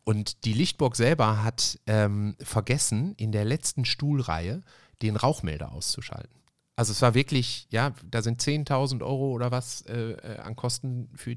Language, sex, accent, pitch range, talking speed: German, male, German, 105-130 Hz, 155 wpm